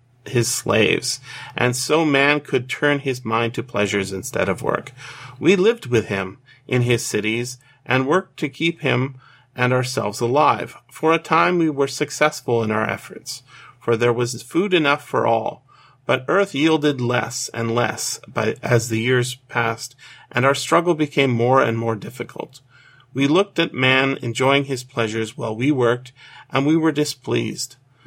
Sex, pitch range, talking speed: male, 120-145 Hz, 165 wpm